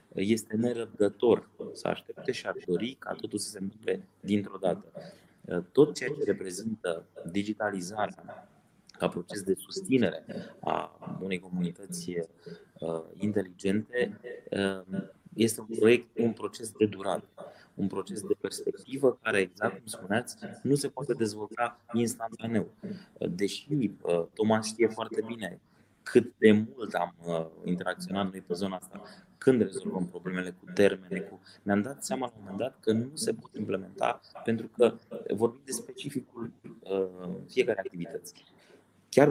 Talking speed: 135 wpm